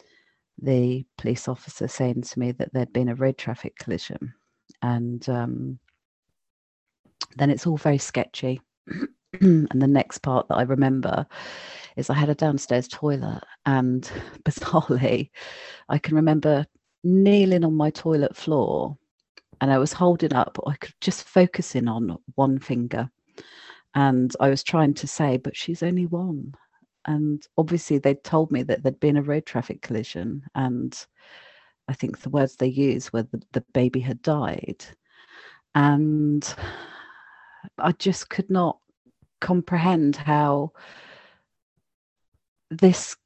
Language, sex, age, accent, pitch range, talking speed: English, female, 40-59, British, 130-175 Hz, 135 wpm